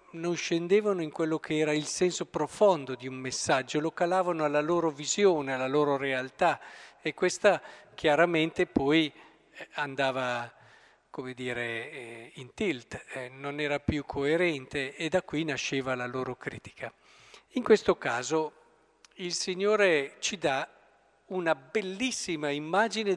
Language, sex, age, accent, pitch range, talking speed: Italian, male, 50-69, native, 145-180 Hz, 130 wpm